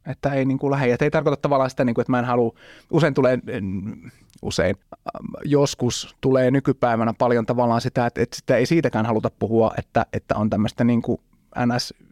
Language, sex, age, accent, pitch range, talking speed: Finnish, male, 30-49, native, 110-135 Hz, 170 wpm